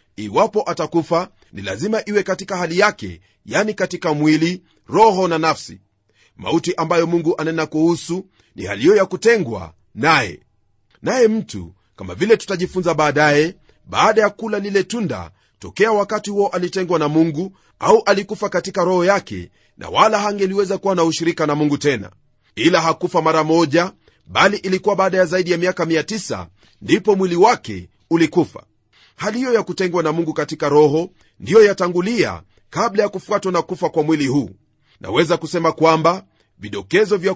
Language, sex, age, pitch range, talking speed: Swahili, male, 40-59, 145-195 Hz, 150 wpm